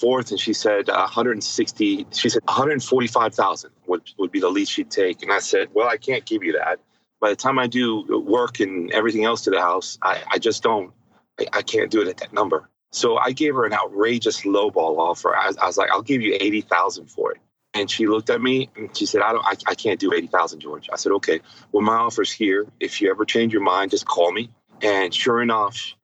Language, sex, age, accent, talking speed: English, male, 30-49, American, 240 wpm